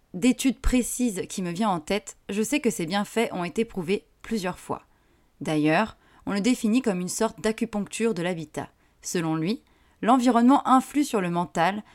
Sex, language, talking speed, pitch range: female, French, 170 wpm, 180-230 Hz